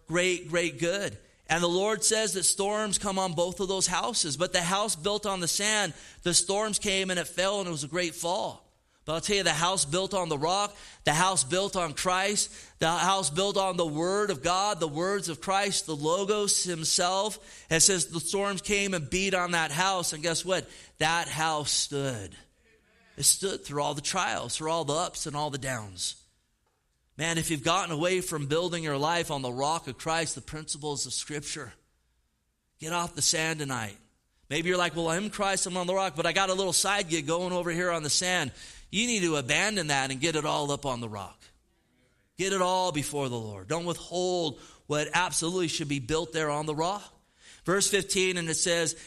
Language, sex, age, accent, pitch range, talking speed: English, male, 30-49, American, 150-185 Hz, 215 wpm